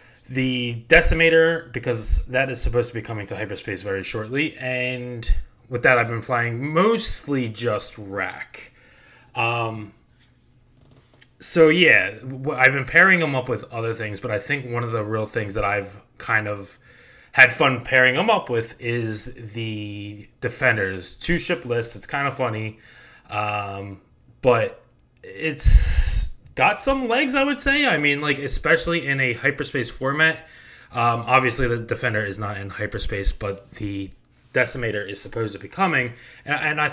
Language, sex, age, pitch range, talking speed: English, male, 20-39, 110-145 Hz, 160 wpm